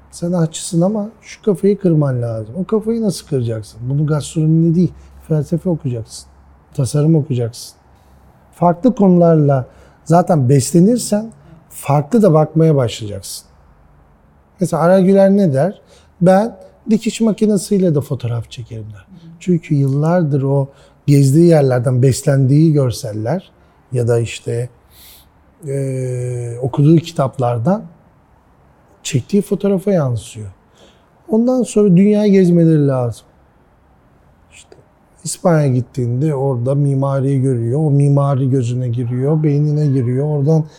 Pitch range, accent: 125-175 Hz, native